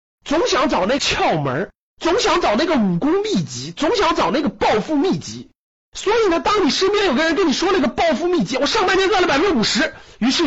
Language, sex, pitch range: Chinese, male, 200-330 Hz